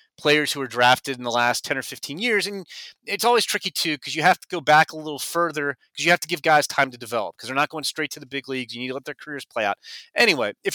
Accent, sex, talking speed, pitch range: American, male, 295 wpm, 140-205 Hz